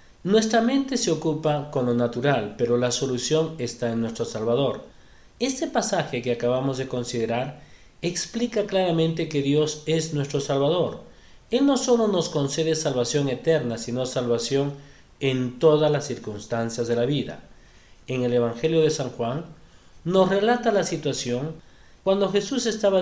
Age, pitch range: 40-59, 120-165 Hz